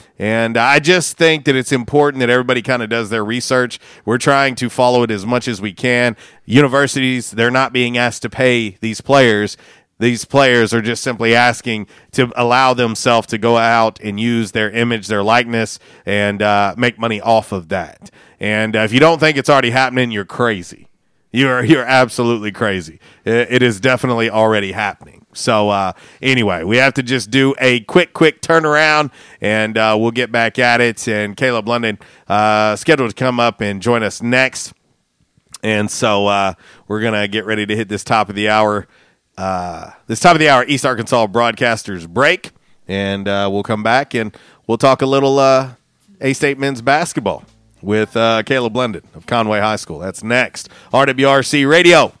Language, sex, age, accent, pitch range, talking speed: English, male, 40-59, American, 110-130 Hz, 185 wpm